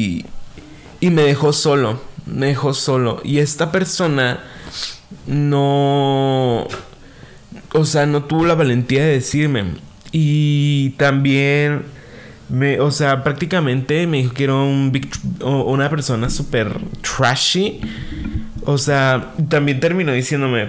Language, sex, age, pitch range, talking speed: Spanish, male, 20-39, 130-155 Hz, 115 wpm